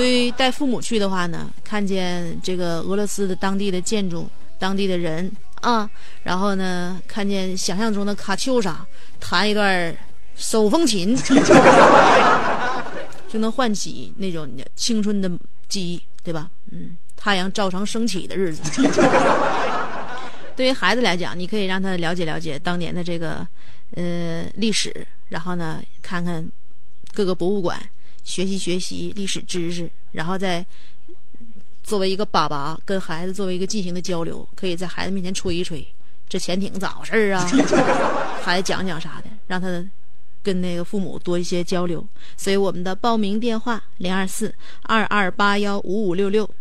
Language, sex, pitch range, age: Chinese, female, 180-215 Hz, 30-49